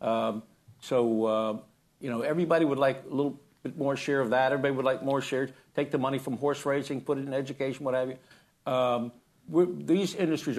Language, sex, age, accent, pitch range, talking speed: English, male, 60-79, American, 120-150 Hz, 210 wpm